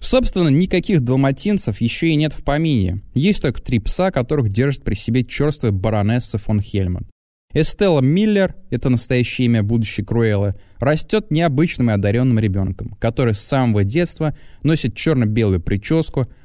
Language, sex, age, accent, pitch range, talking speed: Russian, male, 20-39, native, 105-150 Hz, 140 wpm